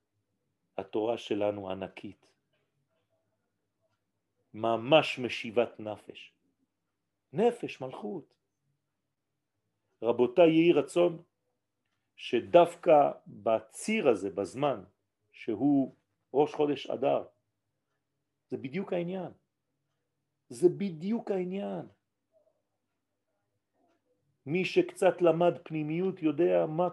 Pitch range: 110-170 Hz